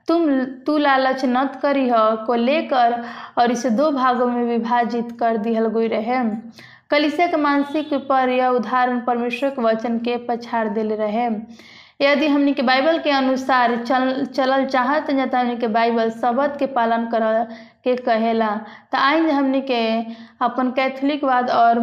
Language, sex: Hindi, female